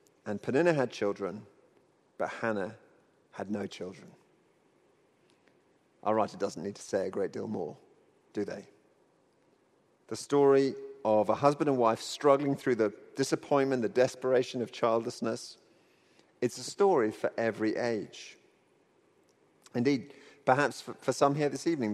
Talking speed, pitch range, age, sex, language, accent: 135 wpm, 115-145 Hz, 40-59, male, English, British